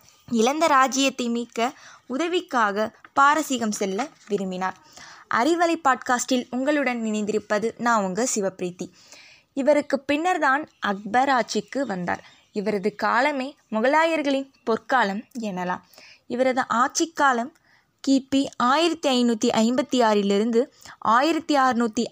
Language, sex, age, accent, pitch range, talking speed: Tamil, female, 20-39, native, 215-275 Hz, 85 wpm